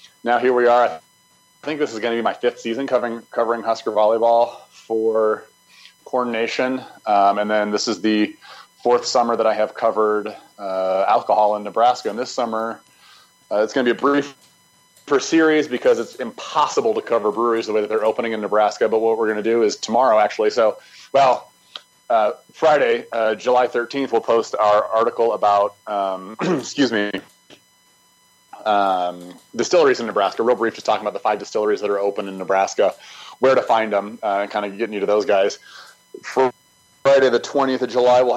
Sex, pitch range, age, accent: male, 105-125 Hz, 30-49, American